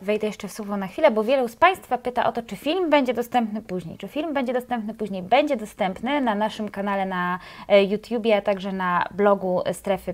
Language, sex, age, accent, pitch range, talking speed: Polish, female, 20-39, native, 210-265 Hz, 205 wpm